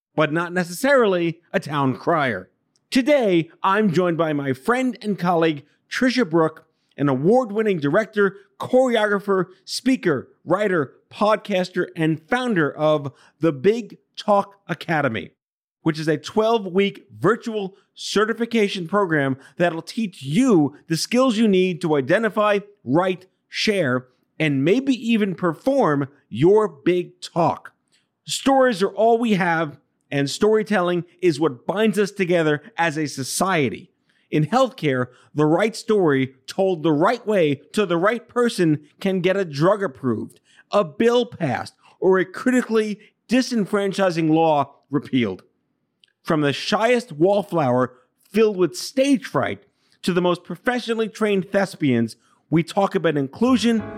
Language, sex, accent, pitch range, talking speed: English, male, American, 155-215 Hz, 130 wpm